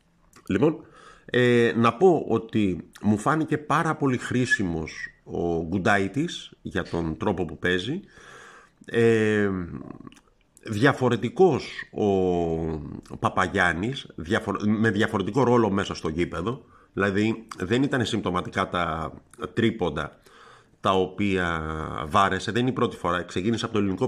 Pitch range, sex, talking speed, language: 90-125 Hz, male, 105 wpm, Greek